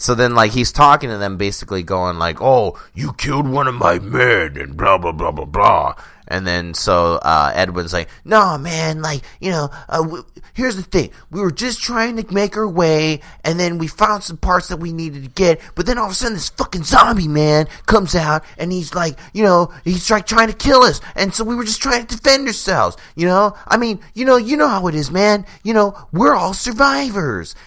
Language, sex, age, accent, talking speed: English, male, 30-49, American, 230 wpm